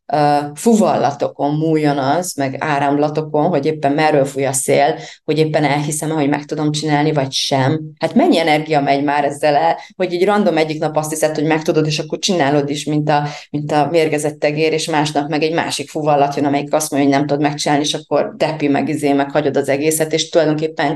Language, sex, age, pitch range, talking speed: Hungarian, female, 30-49, 150-210 Hz, 210 wpm